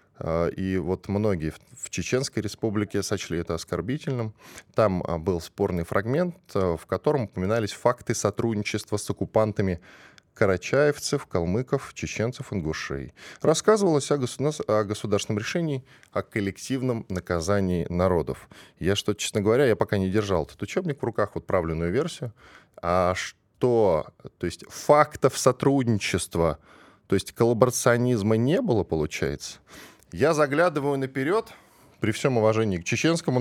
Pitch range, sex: 95-125 Hz, male